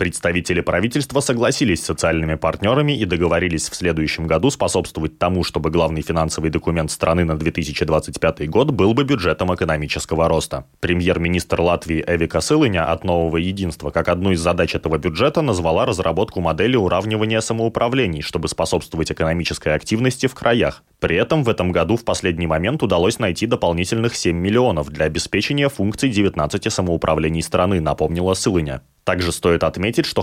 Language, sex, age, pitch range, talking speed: Russian, male, 20-39, 80-100 Hz, 150 wpm